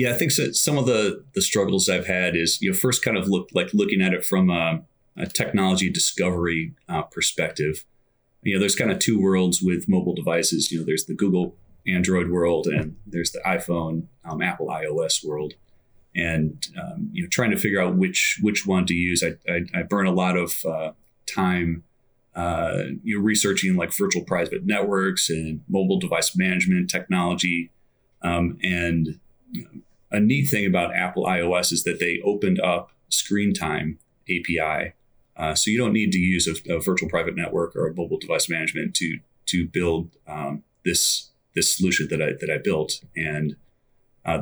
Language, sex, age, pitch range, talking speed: English, male, 30-49, 85-100 Hz, 185 wpm